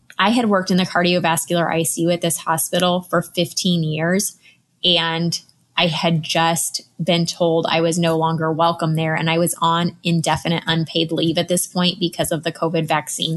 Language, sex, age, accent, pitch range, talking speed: English, female, 20-39, American, 165-185 Hz, 180 wpm